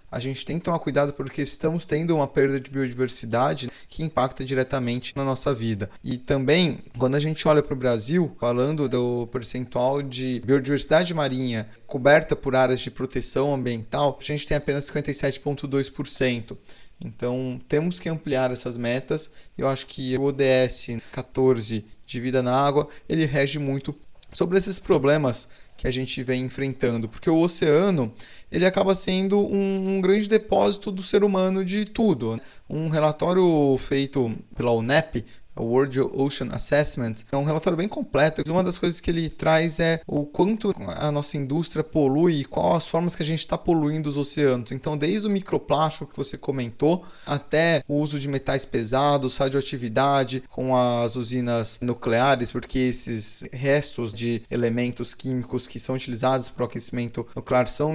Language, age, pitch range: Portuguese, 20-39, 125-150 Hz